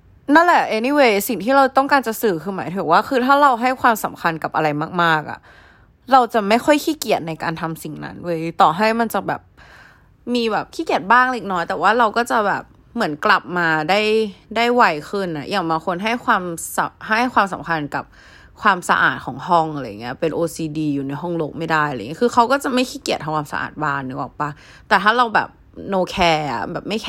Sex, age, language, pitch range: female, 20-39, Thai, 155-230 Hz